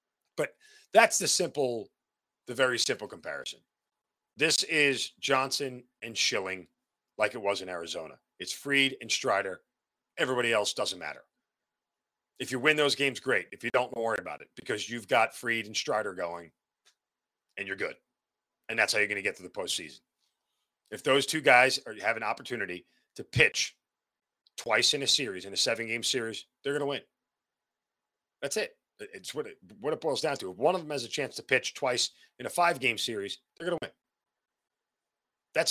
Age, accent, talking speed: 40-59, American, 180 wpm